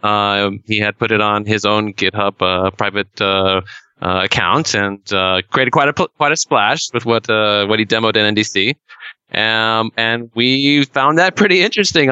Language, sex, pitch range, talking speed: English, male, 110-140 Hz, 190 wpm